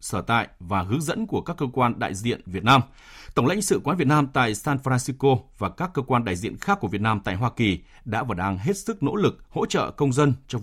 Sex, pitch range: male, 110-155 Hz